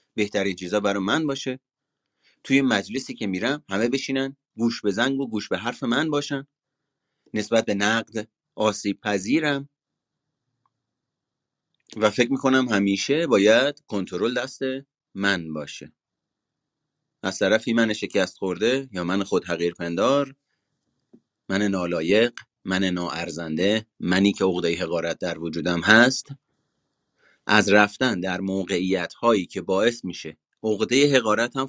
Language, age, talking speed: Persian, 30-49, 120 wpm